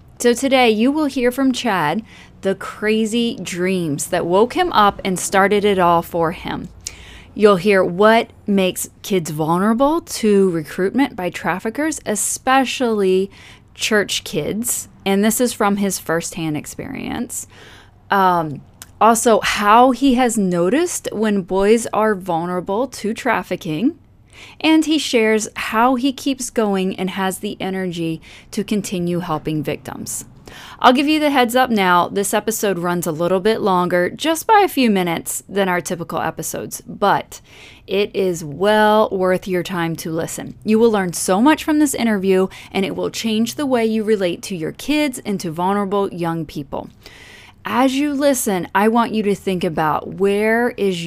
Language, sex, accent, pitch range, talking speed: English, female, American, 180-235 Hz, 155 wpm